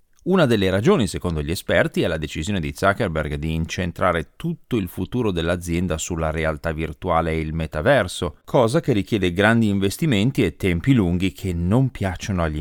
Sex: male